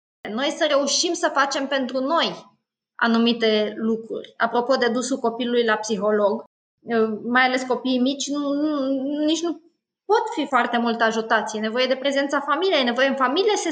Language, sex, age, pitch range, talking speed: Romanian, female, 20-39, 230-290 Hz, 170 wpm